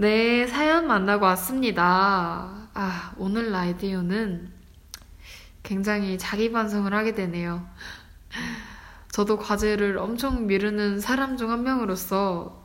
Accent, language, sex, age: native, Korean, female, 20-39